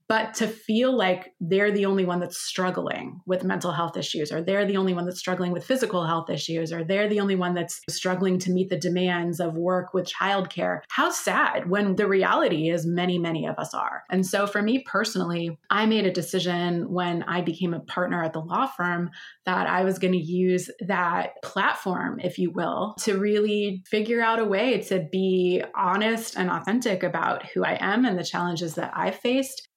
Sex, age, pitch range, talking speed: female, 20-39, 175-205 Hz, 205 wpm